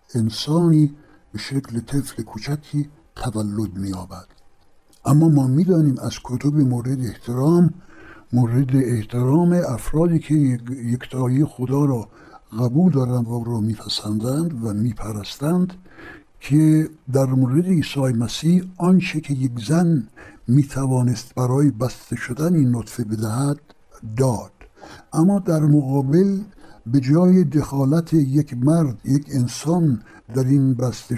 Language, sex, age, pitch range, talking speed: Persian, male, 60-79, 110-150 Hz, 110 wpm